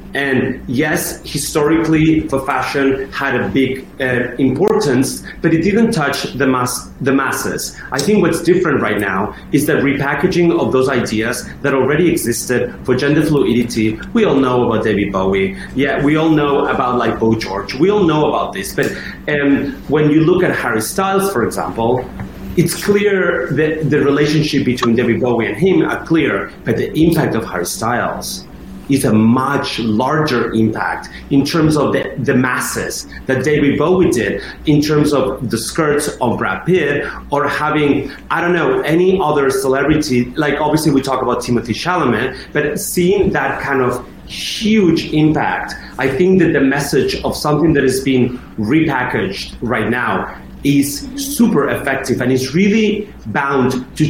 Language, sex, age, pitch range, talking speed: English, male, 30-49, 125-155 Hz, 165 wpm